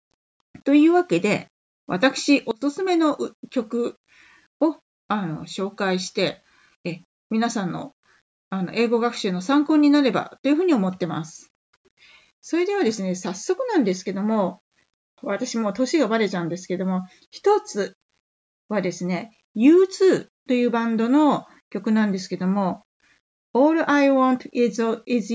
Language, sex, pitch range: Japanese, female, 200-285 Hz